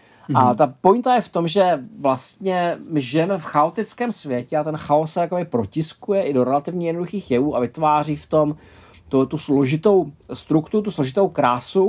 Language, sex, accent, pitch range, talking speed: Czech, male, native, 130-165 Hz, 175 wpm